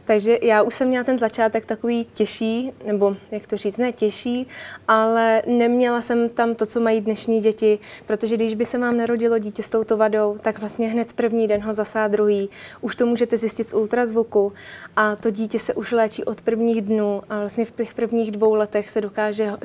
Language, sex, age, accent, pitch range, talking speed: Czech, female, 20-39, native, 210-230 Hz, 195 wpm